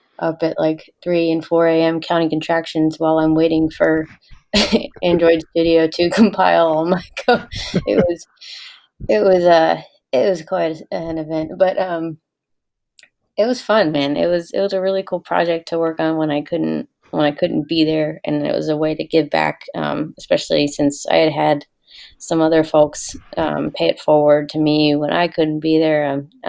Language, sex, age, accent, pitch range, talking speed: English, female, 20-39, American, 155-175 Hz, 190 wpm